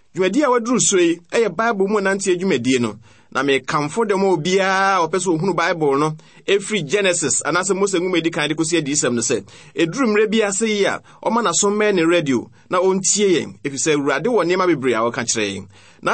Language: Chinese